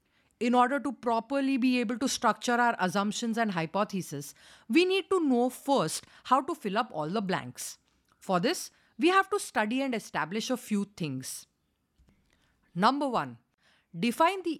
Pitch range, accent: 175-255 Hz, Indian